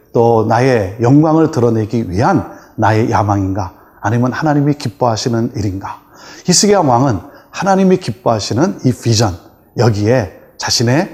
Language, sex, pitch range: Korean, male, 110-150 Hz